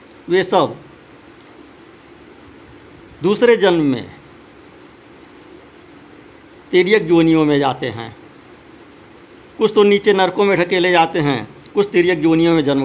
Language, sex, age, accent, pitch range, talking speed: Hindi, male, 50-69, native, 155-200 Hz, 105 wpm